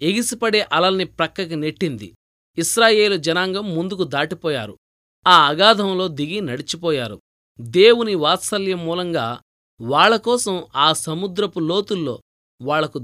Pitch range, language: 150-200 Hz, Telugu